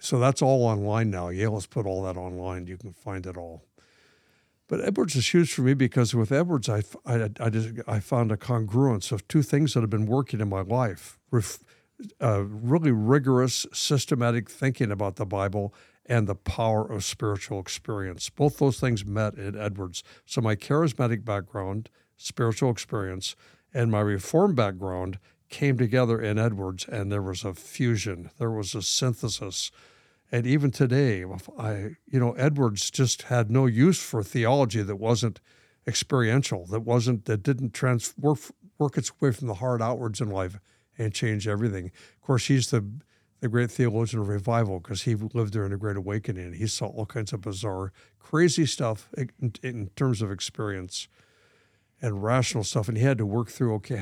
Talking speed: 175 wpm